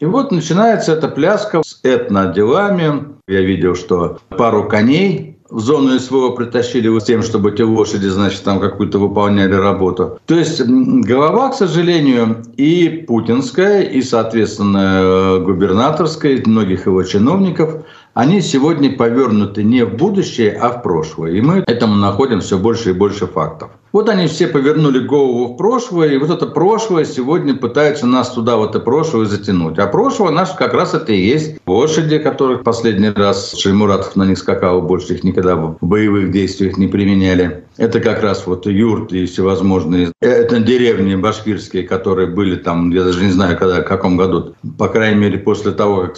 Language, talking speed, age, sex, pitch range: Russian, 170 wpm, 60-79, male, 95-135 Hz